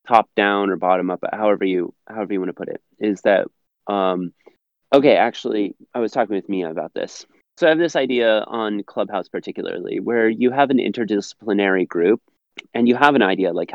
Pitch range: 100-125 Hz